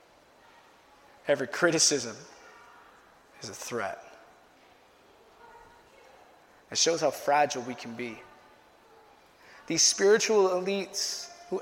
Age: 20-39